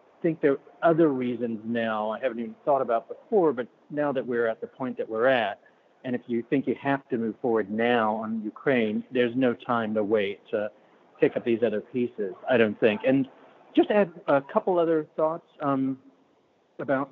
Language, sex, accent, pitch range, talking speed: English, male, American, 120-150 Hz, 200 wpm